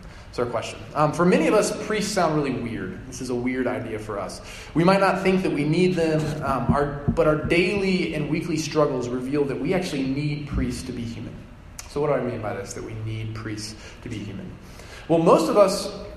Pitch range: 120-155 Hz